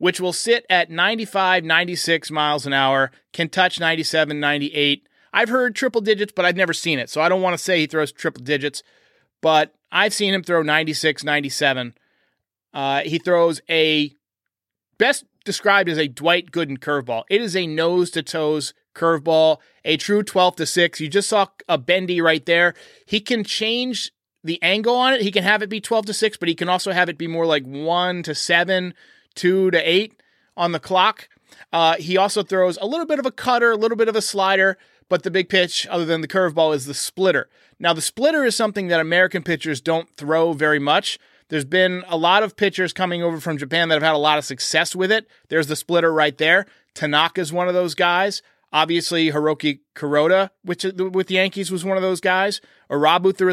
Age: 30-49